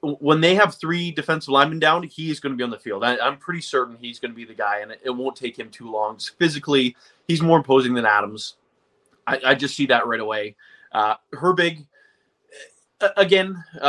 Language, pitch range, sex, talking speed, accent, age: English, 120-160 Hz, male, 210 wpm, American, 20-39